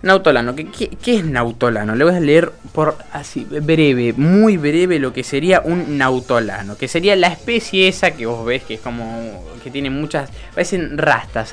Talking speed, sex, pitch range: 175 wpm, male, 120-165 Hz